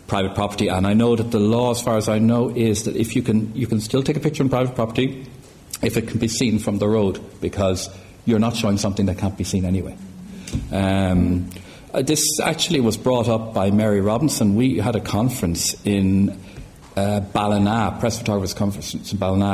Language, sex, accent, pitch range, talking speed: English, male, Irish, 95-115 Hz, 205 wpm